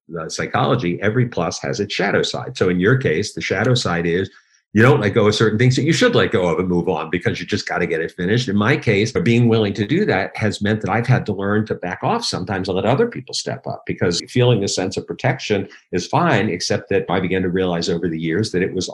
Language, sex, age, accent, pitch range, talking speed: English, male, 50-69, American, 90-115 Hz, 275 wpm